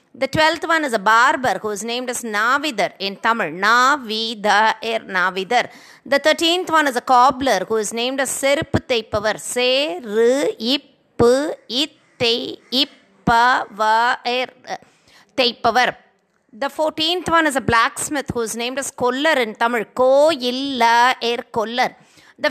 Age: 20-39